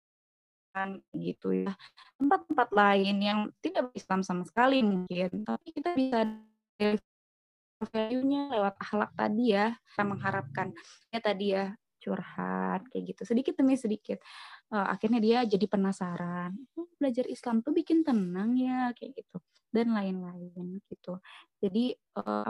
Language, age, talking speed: Indonesian, 20-39, 130 wpm